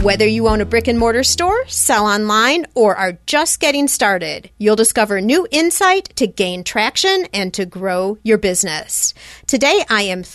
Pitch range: 195-265 Hz